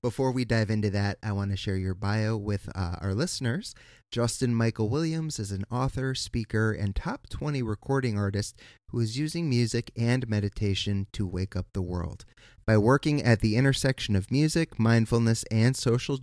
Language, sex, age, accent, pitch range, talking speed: English, male, 30-49, American, 100-120 Hz, 180 wpm